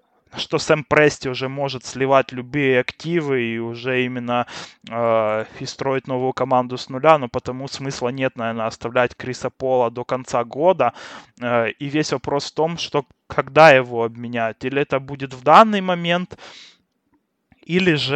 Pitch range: 125-140 Hz